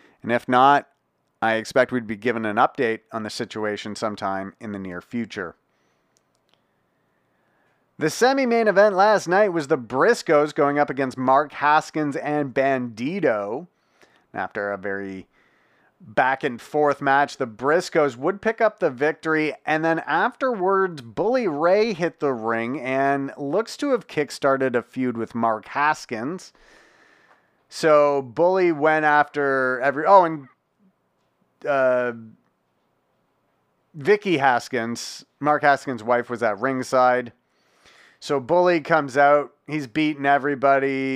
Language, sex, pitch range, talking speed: English, male, 125-160 Hz, 130 wpm